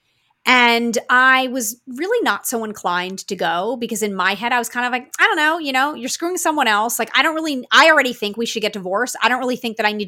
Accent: American